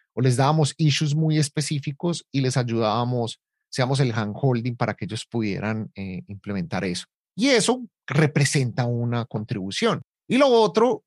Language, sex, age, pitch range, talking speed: Spanish, male, 30-49, 125-155 Hz, 145 wpm